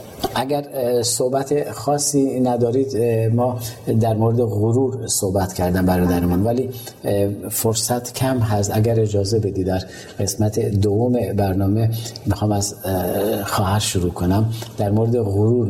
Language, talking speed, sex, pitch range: Persian, 120 wpm, male, 100-115 Hz